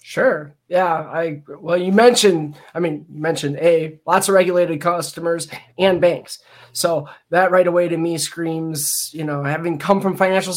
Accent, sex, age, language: American, male, 20-39, English